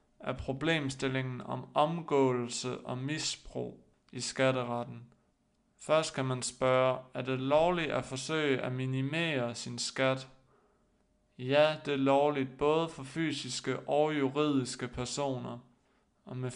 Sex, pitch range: male, 125-150 Hz